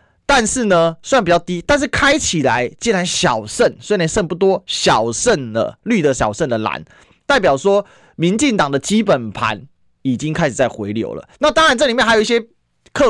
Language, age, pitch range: Chinese, 30-49, 125-195 Hz